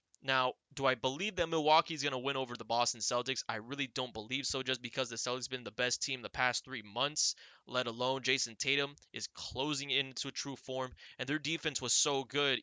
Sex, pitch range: male, 120-145 Hz